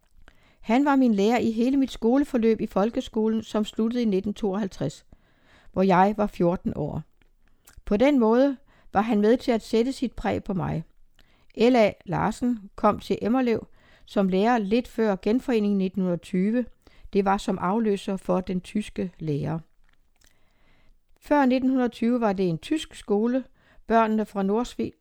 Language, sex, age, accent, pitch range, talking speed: Danish, female, 60-79, native, 185-235 Hz, 145 wpm